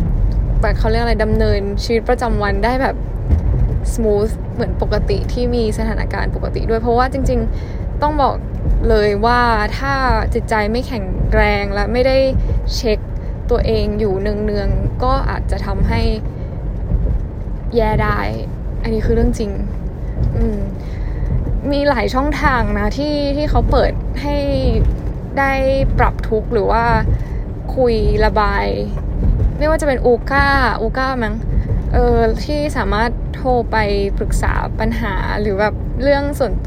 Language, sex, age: Thai, female, 10-29